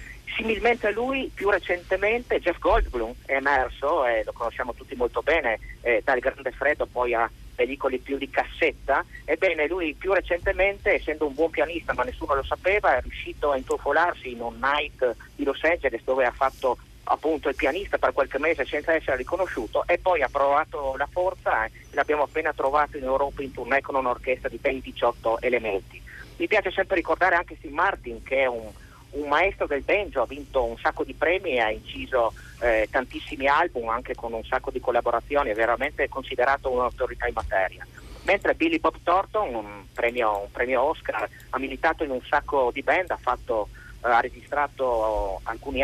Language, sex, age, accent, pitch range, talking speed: Italian, male, 40-59, native, 125-185 Hz, 180 wpm